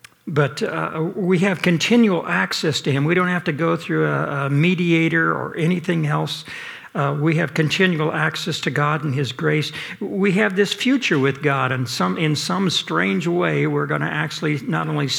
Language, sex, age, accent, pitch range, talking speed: English, male, 60-79, American, 150-190 Hz, 190 wpm